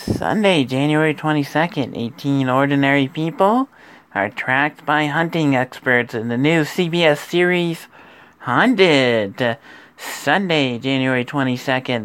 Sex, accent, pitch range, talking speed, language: male, American, 135-170 Hz, 105 wpm, English